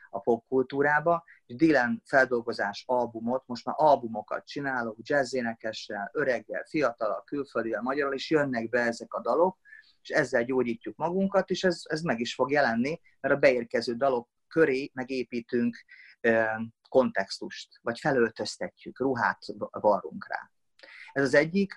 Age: 30-49